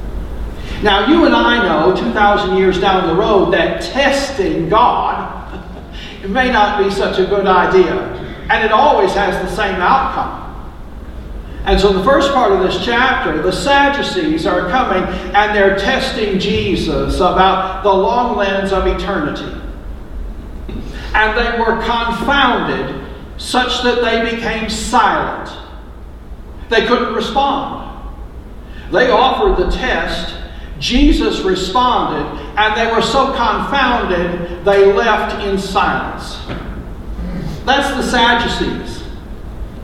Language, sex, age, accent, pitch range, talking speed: English, male, 60-79, American, 185-245 Hz, 120 wpm